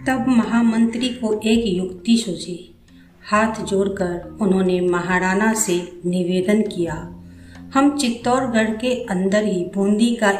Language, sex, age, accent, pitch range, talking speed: Hindi, female, 50-69, native, 180-225 Hz, 115 wpm